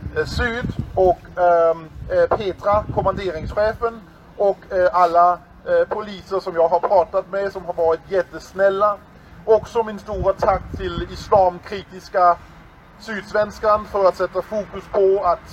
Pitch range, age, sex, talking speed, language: 180-210 Hz, 40-59, male, 110 wpm, English